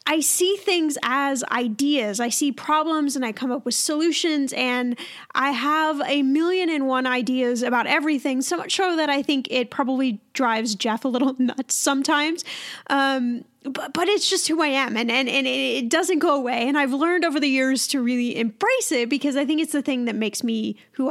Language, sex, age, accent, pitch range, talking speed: English, female, 10-29, American, 250-310 Hz, 210 wpm